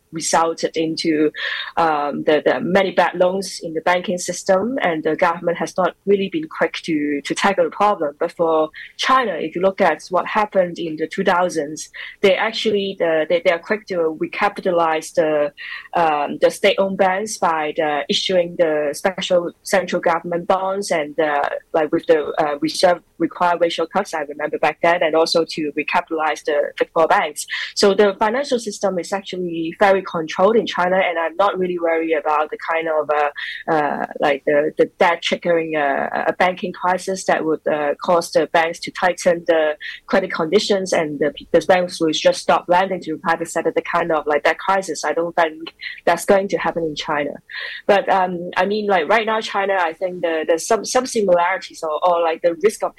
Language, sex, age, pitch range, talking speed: English, female, 20-39, 160-195 Hz, 195 wpm